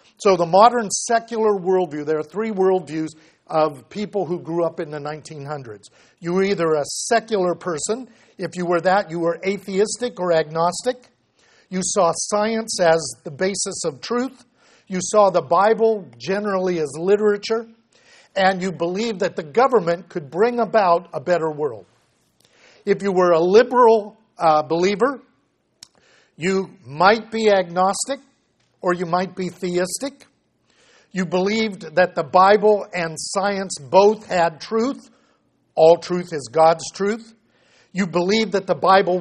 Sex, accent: male, American